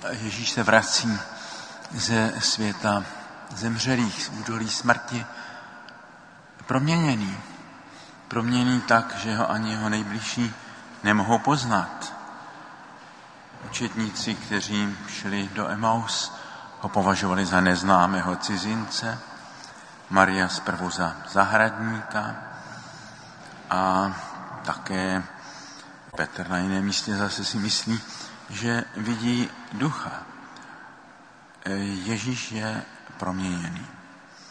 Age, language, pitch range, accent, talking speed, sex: 50-69, Czech, 100-120 Hz, native, 80 wpm, male